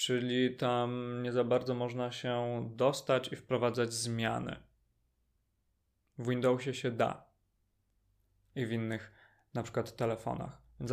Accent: native